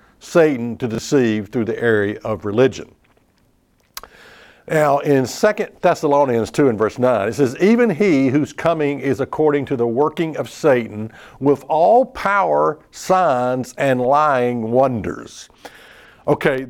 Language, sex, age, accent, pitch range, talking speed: English, male, 60-79, American, 115-155 Hz, 135 wpm